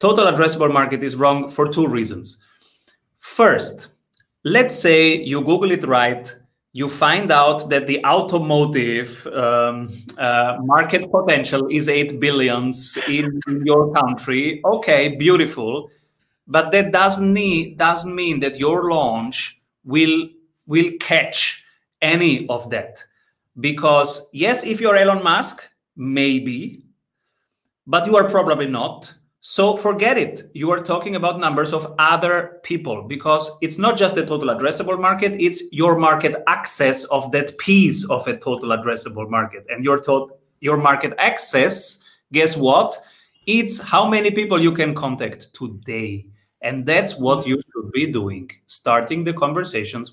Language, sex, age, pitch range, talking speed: English, male, 30-49, 130-170 Hz, 135 wpm